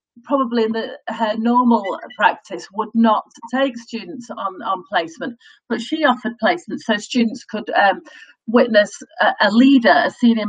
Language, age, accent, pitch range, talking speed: English, 40-59, British, 185-245 Hz, 150 wpm